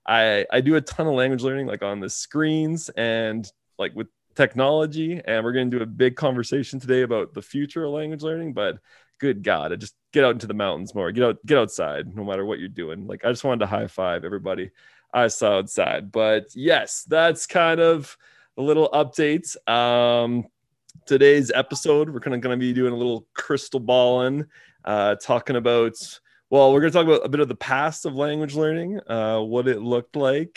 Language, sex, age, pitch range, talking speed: English, male, 20-39, 115-145 Hz, 205 wpm